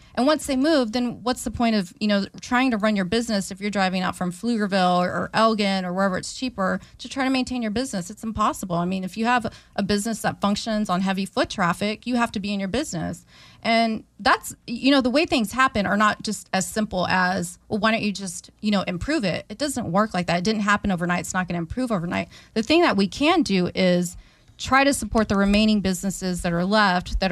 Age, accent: 30-49, American